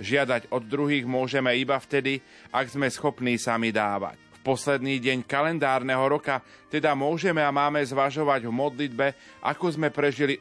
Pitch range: 125-145 Hz